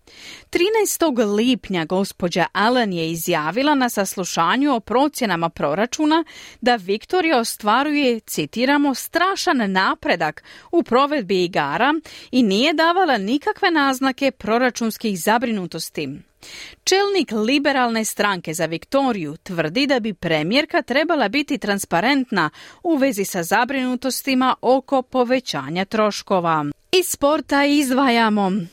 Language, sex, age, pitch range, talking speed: Croatian, female, 40-59, 200-280 Hz, 100 wpm